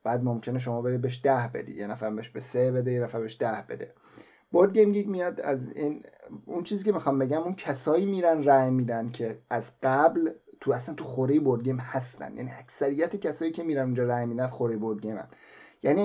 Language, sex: Persian, male